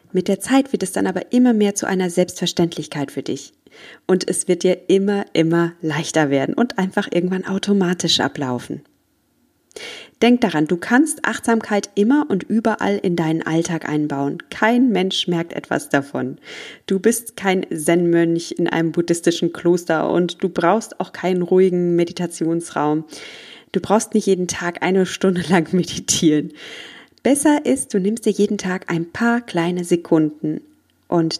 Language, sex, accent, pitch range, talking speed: German, female, German, 165-205 Hz, 155 wpm